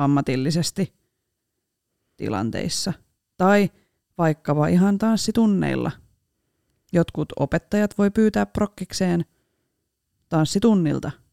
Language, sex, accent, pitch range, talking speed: Finnish, female, native, 140-200 Hz, 70 wpm